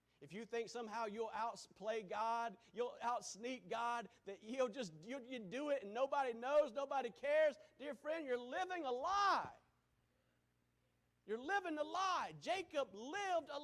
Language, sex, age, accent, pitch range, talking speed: English, male, 40-59, American, 175-290 Hz, 145 wpm